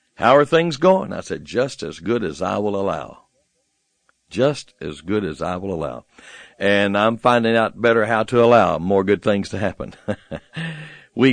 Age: 60-79